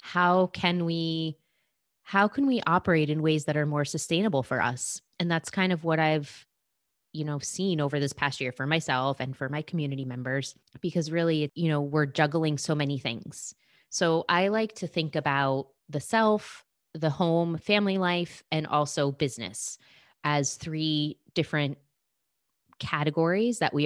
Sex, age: female, 20-39